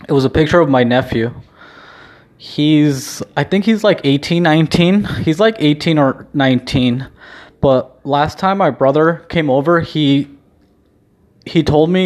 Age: 20-39